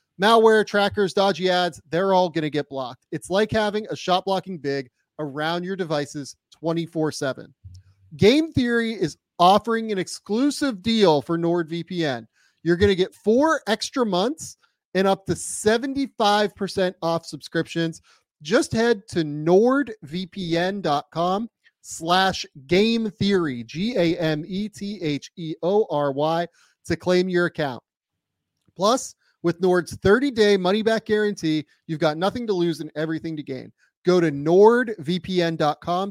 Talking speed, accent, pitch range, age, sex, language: 120 wpm, American, 145-195 Hz, 30-49, male, English